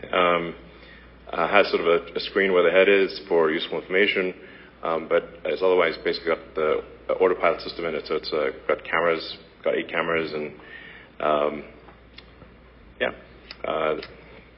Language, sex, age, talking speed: English, male, 40-59, 155 wpm